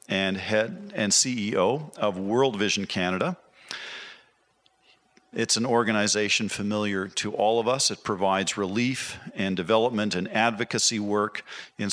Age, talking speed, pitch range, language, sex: 50-69, 125 wpm, 100-120 Hz, English, male